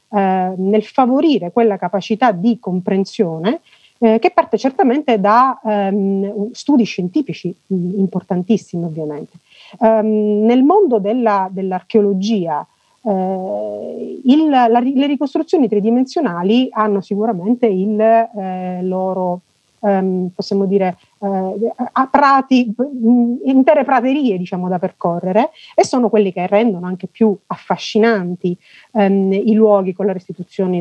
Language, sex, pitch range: Italian, female, 185-235 Hz